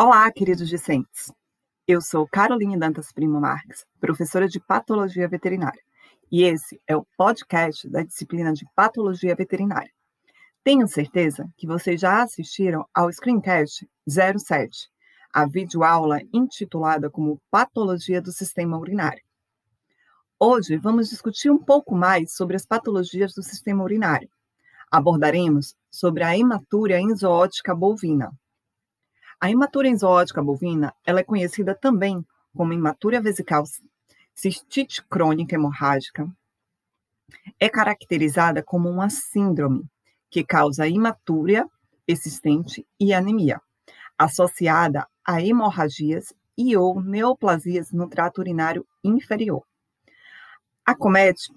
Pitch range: 160-205 Hz